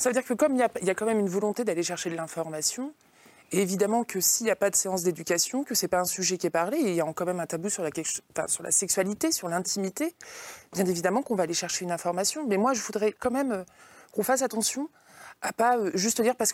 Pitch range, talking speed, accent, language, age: 185-240 Hz, 265 wpm, French, French, 20-39